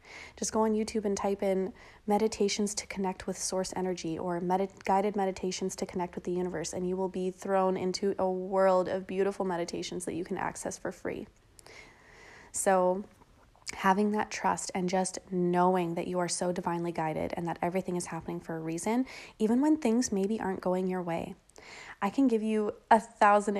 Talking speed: 185 wpm